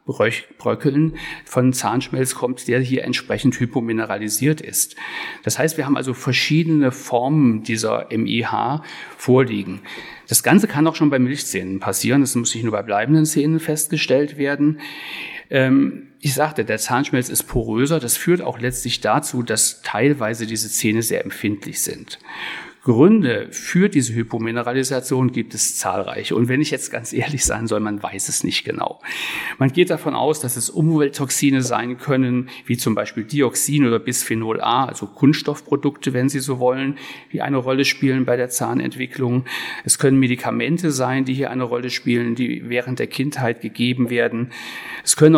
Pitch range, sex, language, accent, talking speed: 120-145 Hz, male, German, German, 160 wpm